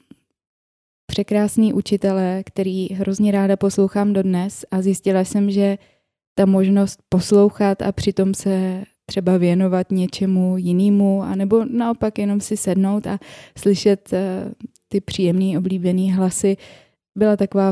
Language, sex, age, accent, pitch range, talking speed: Czech, female, 20-39, native, 185-200 Hz, 120 wpm